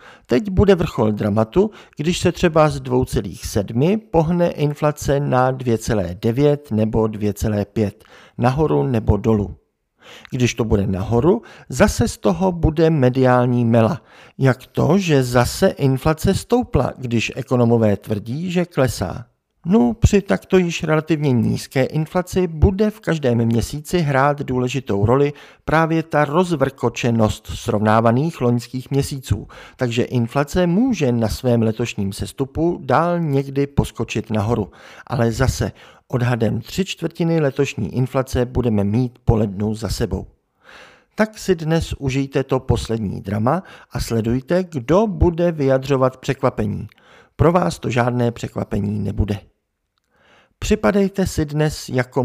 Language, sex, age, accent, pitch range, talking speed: Czech, male, 50-69, native, 110-155 Hz, 120 wpm